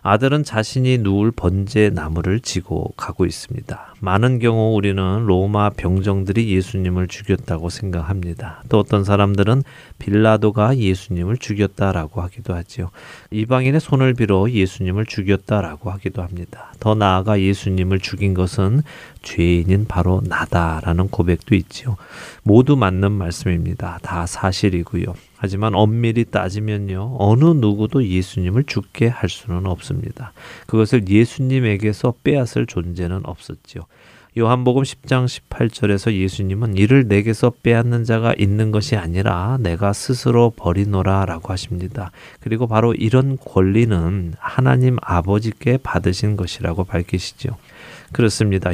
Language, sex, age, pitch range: Korean, male, 30-49, 95-120 Hz